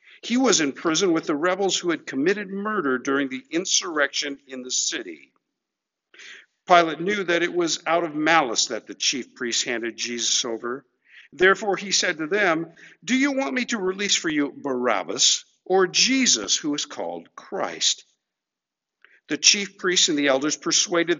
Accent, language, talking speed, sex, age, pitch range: American, English, 165 wpm, male, 50-69, 140-200 Hz